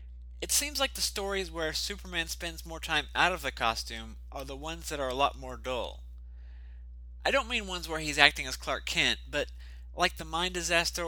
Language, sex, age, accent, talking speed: English, male, 30-49, American, 205 wpm